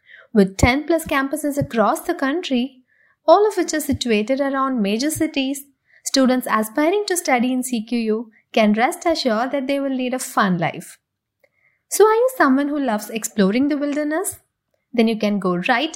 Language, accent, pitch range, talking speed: English, Indian, 220-300 Hz, 170 wpm